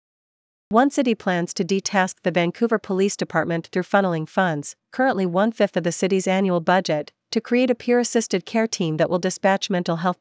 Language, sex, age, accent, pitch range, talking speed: English, female, 40-59, American, 165-205 Hz, 190 wpm